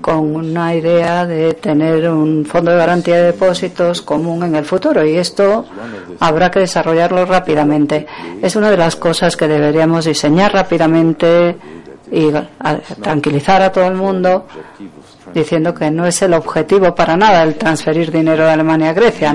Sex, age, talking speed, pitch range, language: female, 40-59, 160 wpm, 155-195 Hz, Spanish